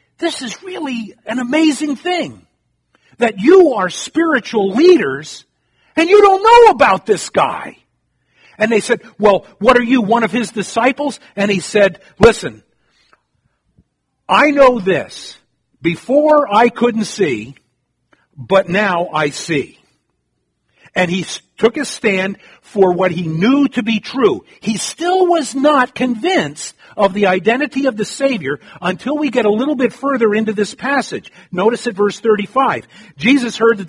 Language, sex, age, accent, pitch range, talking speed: English, male, 50-69, American, 175-250 Hz, 150 wpm